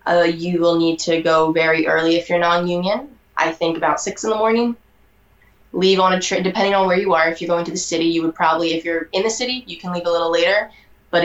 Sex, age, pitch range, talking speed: female, 20-39, 165-185 Hz, 255 wpm